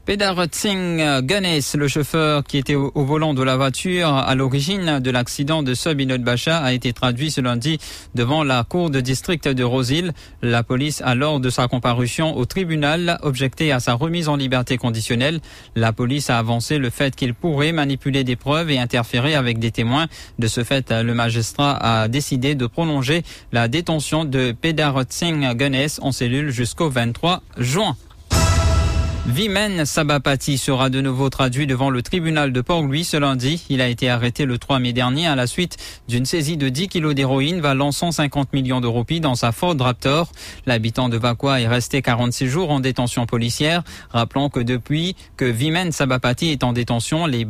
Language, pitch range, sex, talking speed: English, 125-155 Hz, male, 175 wpm